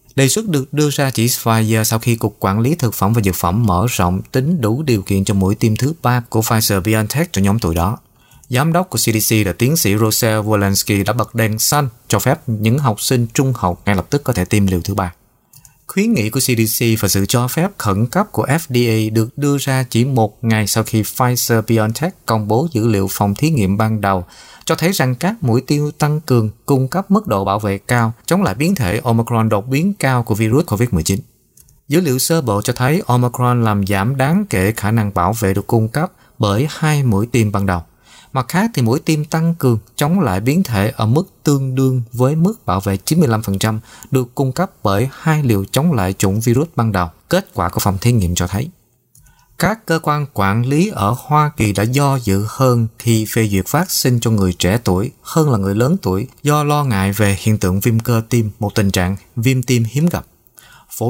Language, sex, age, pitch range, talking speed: Vietnamese, male, 20-39, 105-140 Hz, 220 wpm